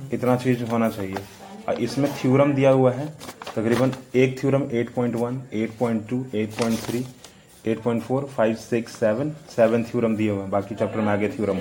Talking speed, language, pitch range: 150 wpm, English, 110-135 Hz